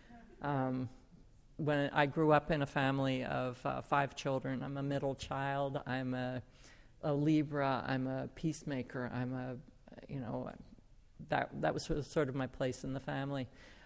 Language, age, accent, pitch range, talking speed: English, 50-69, American, 130-145 Hz, 160 wpm